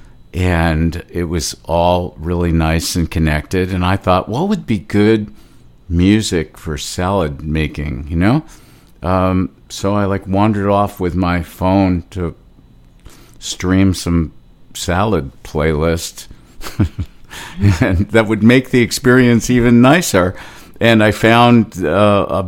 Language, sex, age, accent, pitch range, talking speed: English, male, 50-69, American, 80-100 Hz, 130 wpm